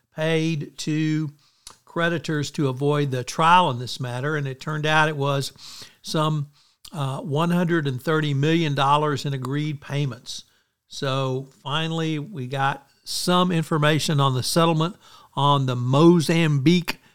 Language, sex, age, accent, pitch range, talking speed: English, male, 60-79, American, 120-155 Hz, 125 wpm